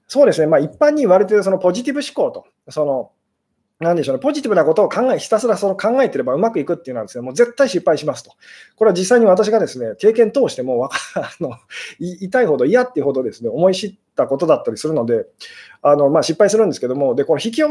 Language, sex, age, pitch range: Japanese, male, 20-39, 155-255 Hz